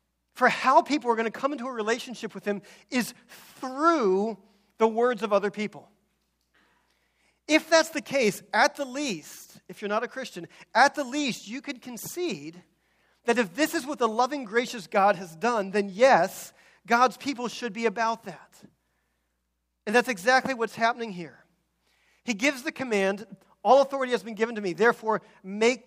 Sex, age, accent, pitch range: male, 40-59, American, 180-240 Hz